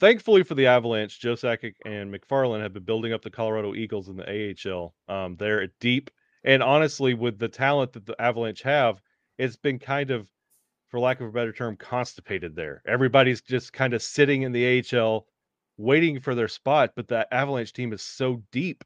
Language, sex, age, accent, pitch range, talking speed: English, male, 30-49, American, 110-135 Hz, 195 wpm